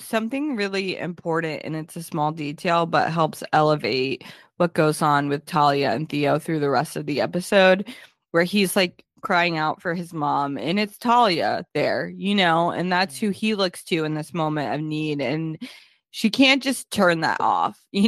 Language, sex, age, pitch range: English, female, 20-39, 165-230 Hz